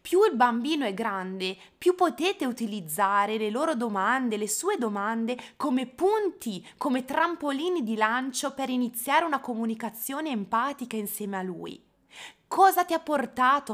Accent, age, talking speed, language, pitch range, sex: native, 20-39, 140 wpm, Italian, 205-305 Hz, female